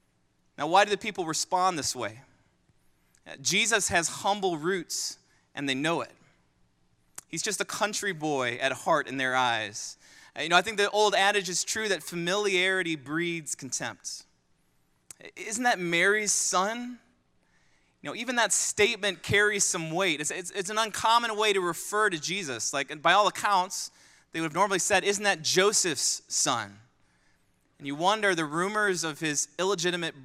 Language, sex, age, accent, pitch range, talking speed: English, male, 20-39, American, 145-200 Hz, 165 wpm